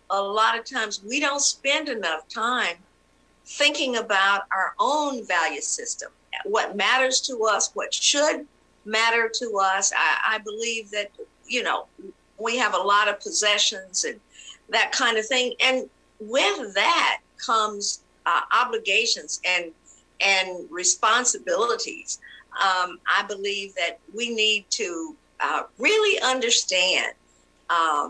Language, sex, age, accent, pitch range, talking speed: English, female, 50-69, American, 195-270 Hz, 130 wpm